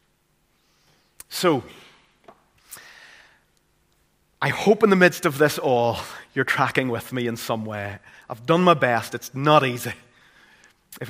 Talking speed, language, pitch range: 130 wpm, English, 115-160 Hz